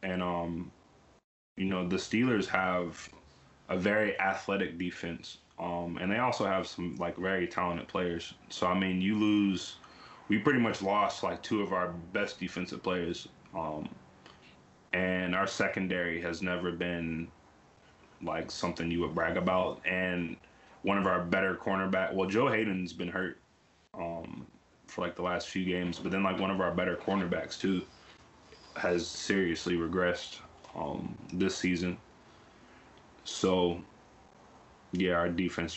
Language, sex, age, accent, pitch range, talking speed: English, male, 20-39, American, 85-95 Hz, 145 wpm